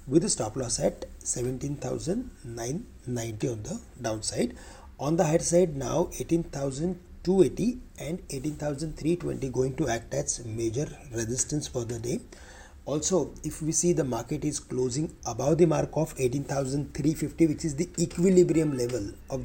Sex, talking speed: male, 140 wpm